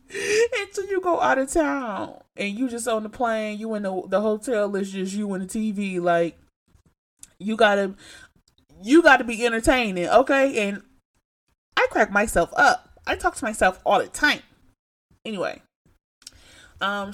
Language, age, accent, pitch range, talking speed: English, 20-39, American, 180-215 Hz, 160 wpm